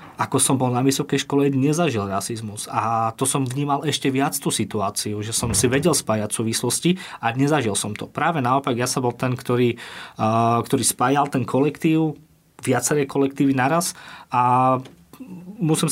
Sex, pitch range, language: male, 120-145 Hz, Slovak